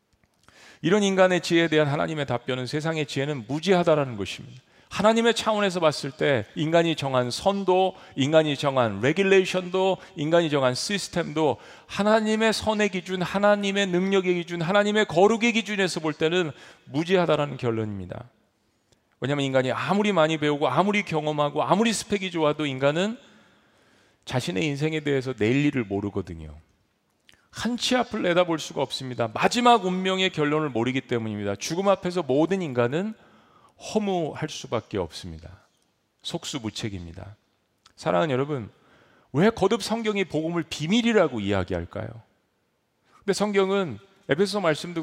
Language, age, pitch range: Korean, 40-59, 135-195 Hz